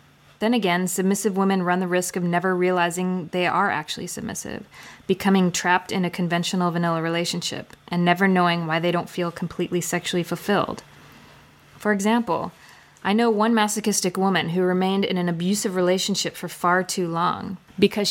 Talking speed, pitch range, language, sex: 160 wpm, 175-200 Hz, English, female